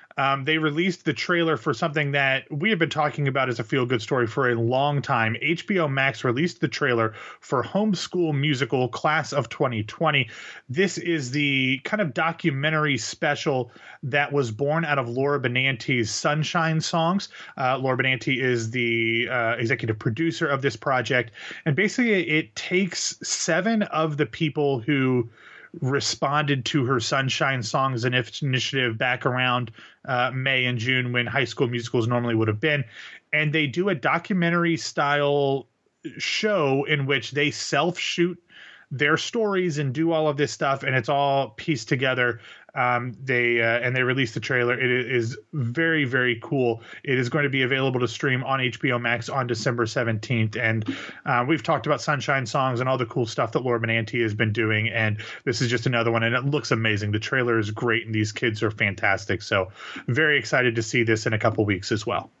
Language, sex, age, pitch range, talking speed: English, male, 30-49, 120-150 Hz, 185 wpm